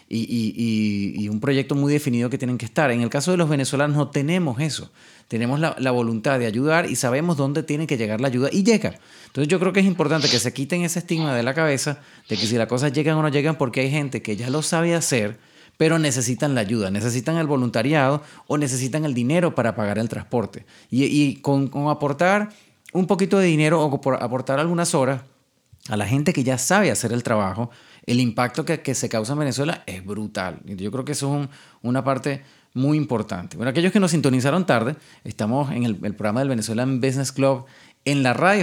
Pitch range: 115-155 Hz